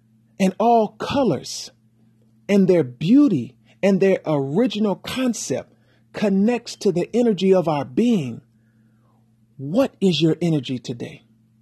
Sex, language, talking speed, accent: male, English, 115 wpm, American